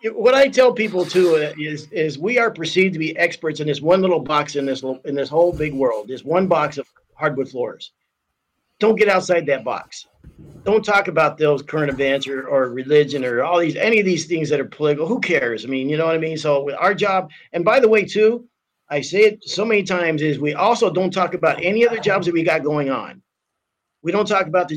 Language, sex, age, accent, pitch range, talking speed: English, male, 50-69, American, 150-195 Hz, 235 wpm